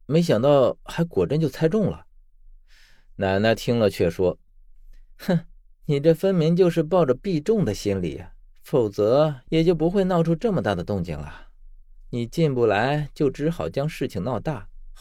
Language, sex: Chinese, male